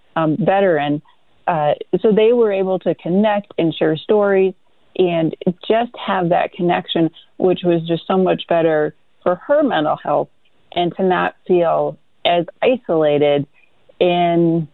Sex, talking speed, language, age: female, 140 wpm, English, 30-49